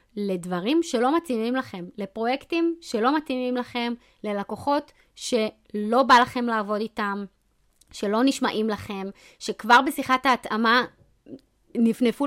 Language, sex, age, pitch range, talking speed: Hebrew, female, 20-39, 195-260 Hz, 105 wpm